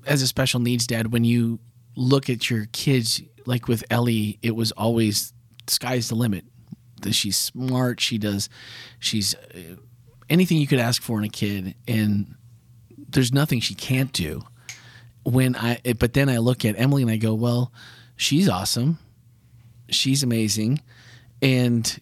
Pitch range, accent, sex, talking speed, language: 110-125 Hz, American, male, 155 wpm, English